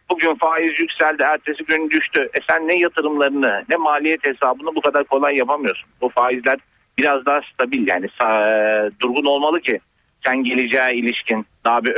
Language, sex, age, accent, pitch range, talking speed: Turkish, male, 50-69, native, 115-165 Hz, 170 wpm